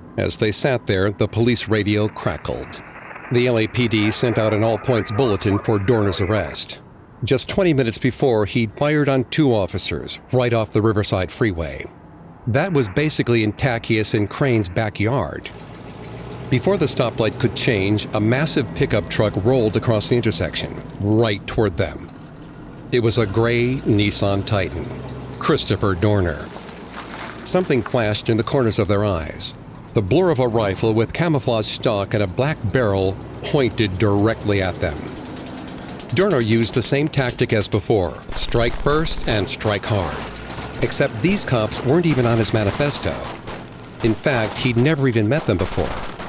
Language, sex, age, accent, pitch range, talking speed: English, male, 50-69, American, 100-125 Hz, 150 wpm